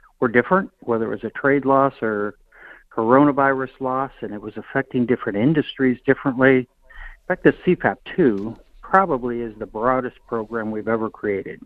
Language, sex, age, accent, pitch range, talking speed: English, male, 50-69, American, 110-130 Hz, 160 wpm